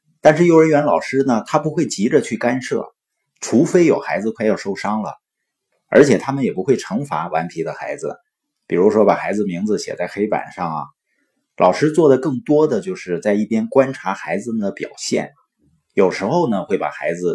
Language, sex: Chinese, male